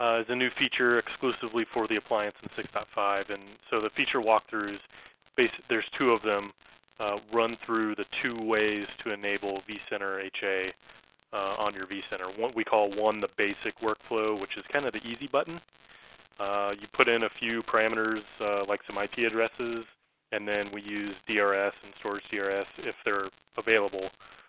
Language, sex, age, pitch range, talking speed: English, male, 20-39, 100-120 Hz, 170 wpm